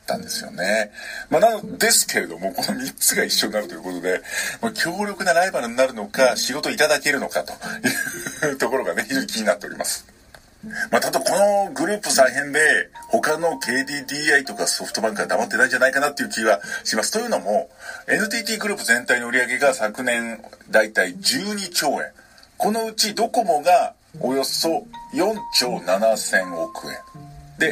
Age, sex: 50-69, male